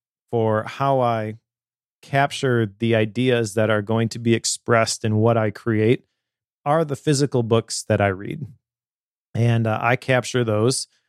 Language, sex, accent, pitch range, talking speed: English, male, American, 110-125 Hz, 150 wpm